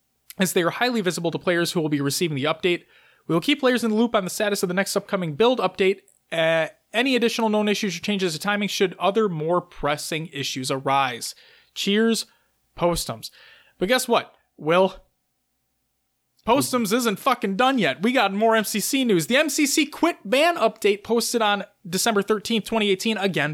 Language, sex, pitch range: English, male, 185-245 Hz